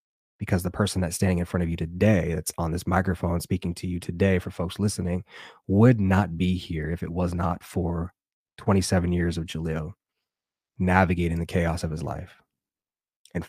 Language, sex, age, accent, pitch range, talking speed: English, male, 20-39, American, 85-95 Hz, 180 wpm